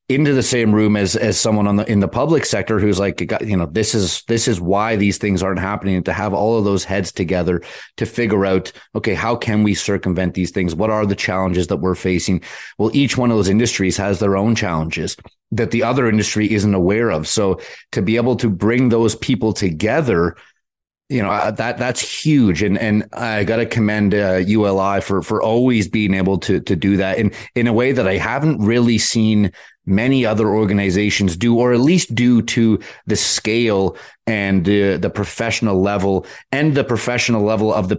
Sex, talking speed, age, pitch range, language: male, 200 wpm, 30-49, 95-115 Hz, English